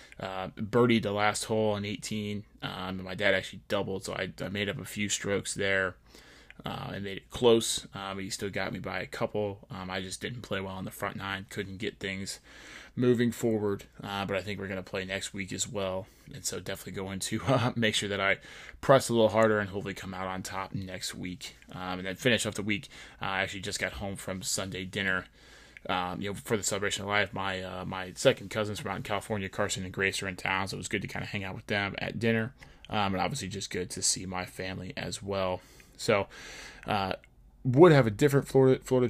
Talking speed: 240 wpm